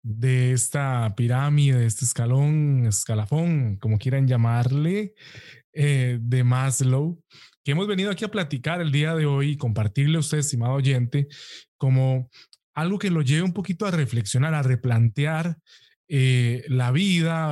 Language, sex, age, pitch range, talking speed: Spanish, male, 20-39, 130-160 Hz, 145 wpm